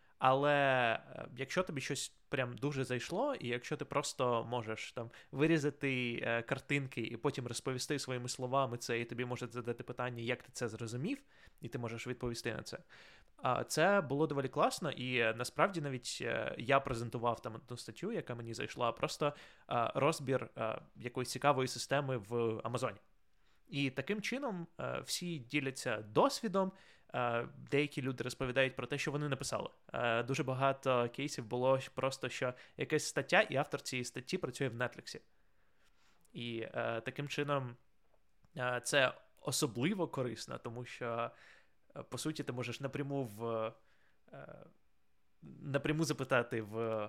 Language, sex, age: Ukrainian, male, 20-39